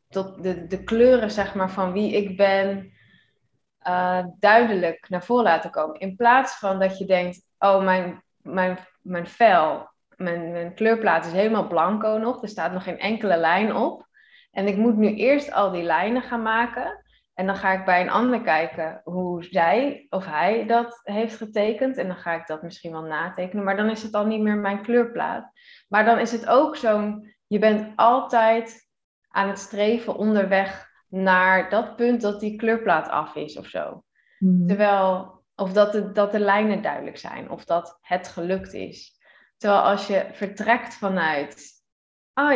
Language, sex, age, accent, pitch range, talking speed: Dutch, female, 20-39, Dutch, 180-220 Hz, 180 wpm